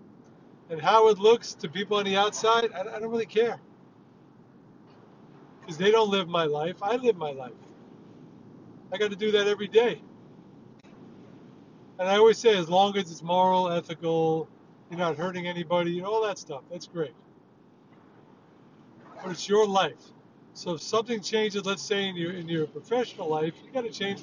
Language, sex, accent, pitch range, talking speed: English, male, American, 175-215 Hz, 175 wpm